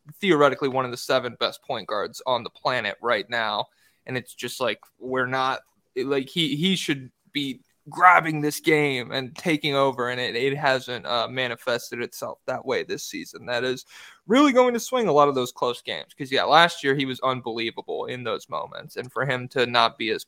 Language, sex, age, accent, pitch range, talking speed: English, male, 20-39, American, 130-155 Hz, 210 wpm